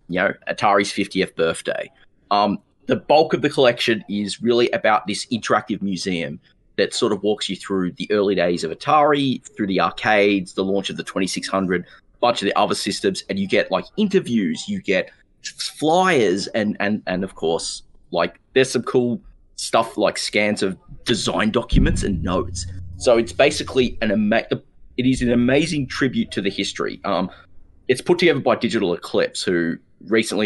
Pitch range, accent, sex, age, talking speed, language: 95-120 Hz, Australian, male, 30-49, 175 wpm, English